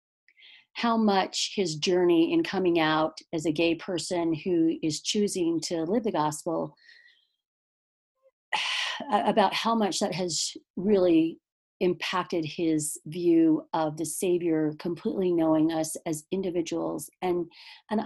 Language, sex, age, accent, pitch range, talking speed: English, female, 40-59, American, 170-275 Hz, 125 wpm